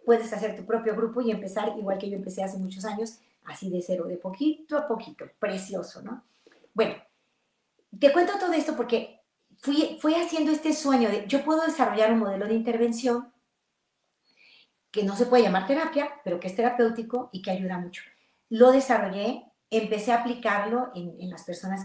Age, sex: 40-59, female